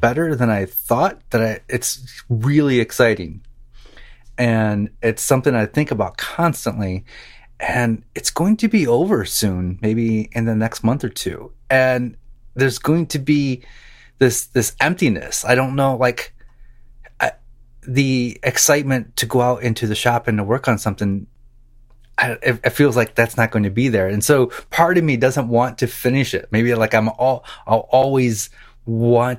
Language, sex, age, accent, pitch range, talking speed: English, male, 30-49, American, 110-125 Hz, 170 wpm